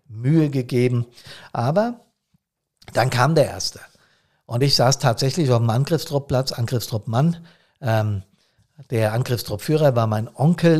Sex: male